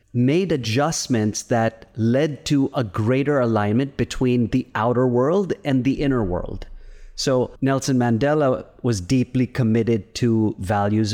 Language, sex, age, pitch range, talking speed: English, male, 30-49, 110-135 Hz, 130 wpm